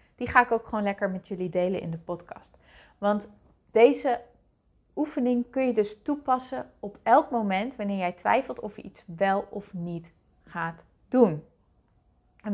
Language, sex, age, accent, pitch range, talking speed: Dutch, female, 30-49, Dutch, 195-230 Hz, 165 wpm